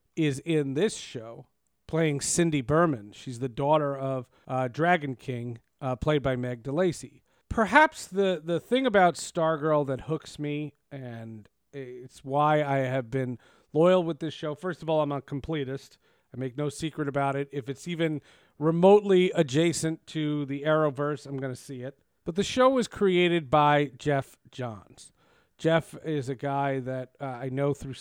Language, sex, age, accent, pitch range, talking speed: English, male, 40-59, American, 135-165 Hz, 170 wpm